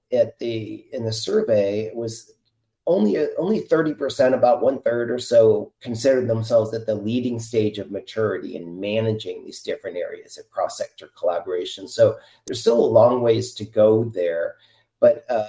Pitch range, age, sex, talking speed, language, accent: 105-145 Hz, 30-49, male, 155 wpm, English, American